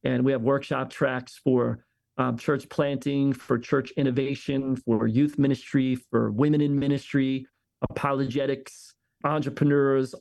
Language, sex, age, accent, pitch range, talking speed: English, male, 40-59, American, 125-140 Hz, 125 wpm